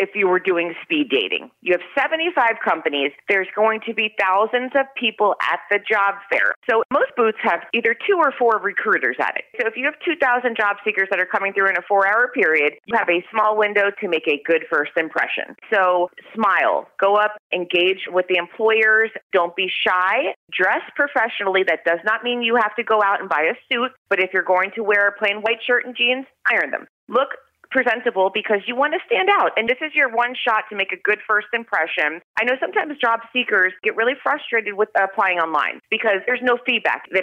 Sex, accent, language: female, American, English